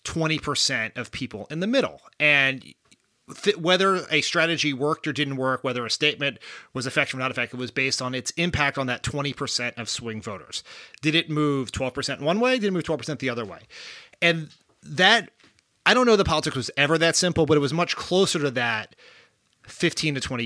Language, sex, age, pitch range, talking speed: English, male, 30-49, 125-155 Hz, 200 wpm